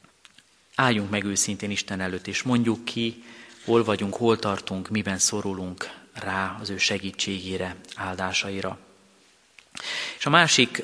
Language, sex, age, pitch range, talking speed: Hungarian, male, 30-49, 100-115 Hz, 120 wpm